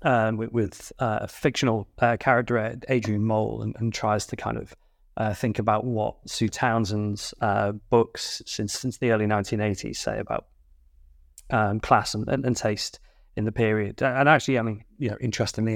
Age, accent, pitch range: 30-49, British, 105-120 Hz